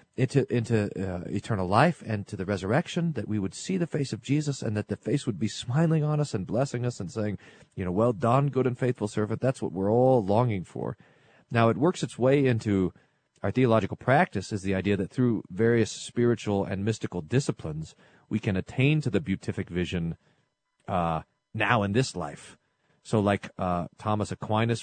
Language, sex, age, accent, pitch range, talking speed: English, male, 40-59, American, 100-125 Hz, 195 wpm